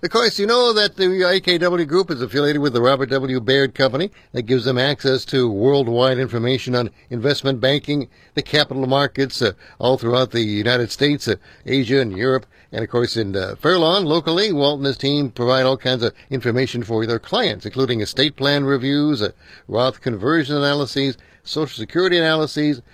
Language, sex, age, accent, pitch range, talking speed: English, male, 60-79, American, 120-145 Hz, 180 wpm